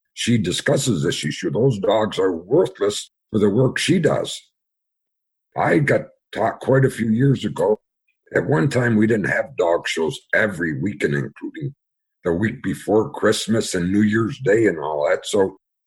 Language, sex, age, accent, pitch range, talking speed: English, male, 60-79, American, 105-135 Hz, 165 wpm